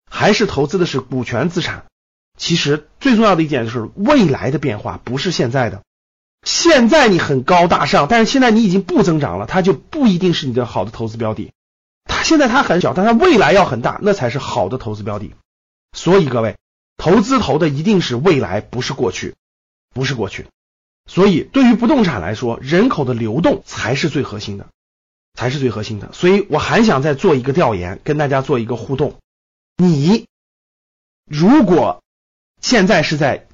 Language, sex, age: Chinese, male, 30-49